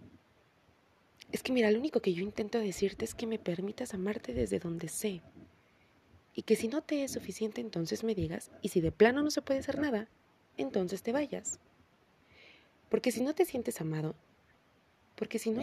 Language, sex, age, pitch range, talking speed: Spanish, female, 30-49, 175-225 Hz, 185 wpm